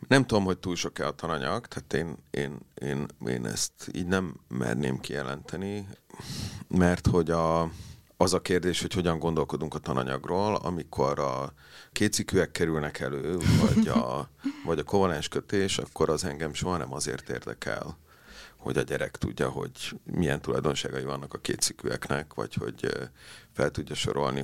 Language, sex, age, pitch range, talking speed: Hungarian, male, 40-59, 75-95 Hz, 150 wpm